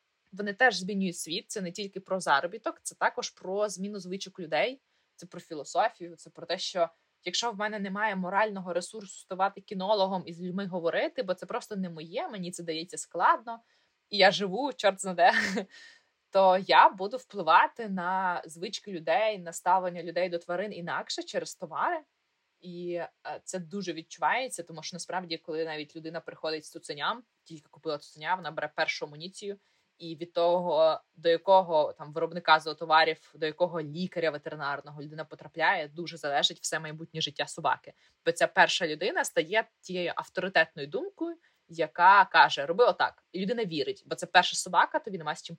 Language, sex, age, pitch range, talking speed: Ukrainian, female, 20-39, 165-205 Hz, 170 wpm